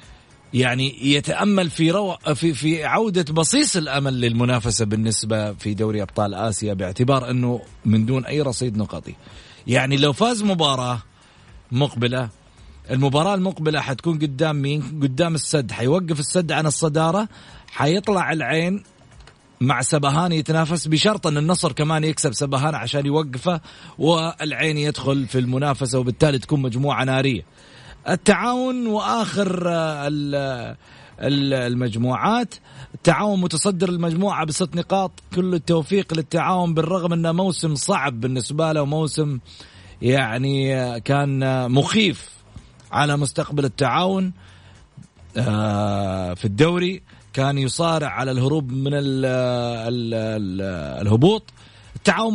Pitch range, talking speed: 125-170 Hz, 105 wpm